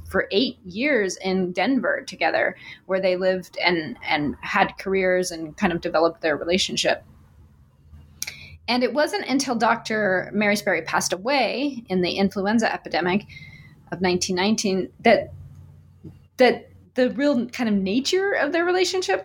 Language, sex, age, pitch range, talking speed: English, female, 20-39, 180-240 Hz, 135 wpm